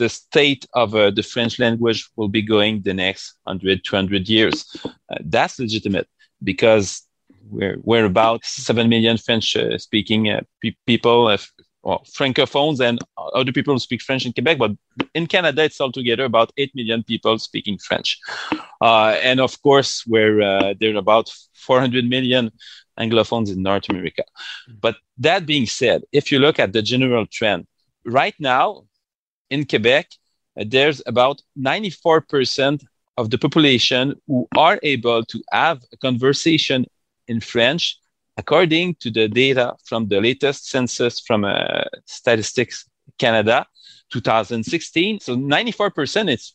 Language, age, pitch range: English, 30-49, 115-145 Hz